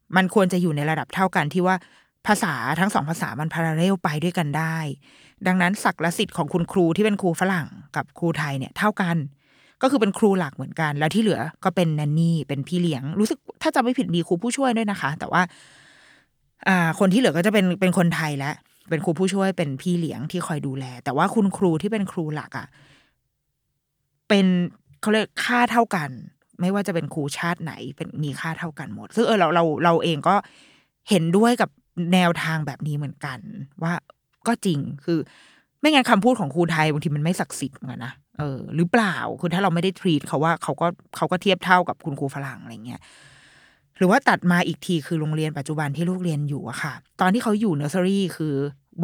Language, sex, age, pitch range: Thai, female, 20-39, 150-190 Hz